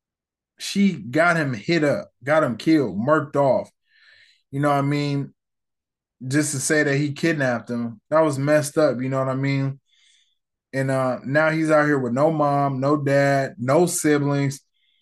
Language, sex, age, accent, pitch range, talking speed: English, male, 20-39, American, 130-160 Hz, 175 wpm